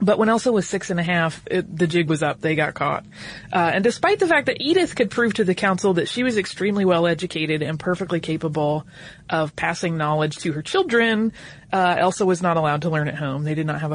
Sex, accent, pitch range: female, American, 160-205 Hz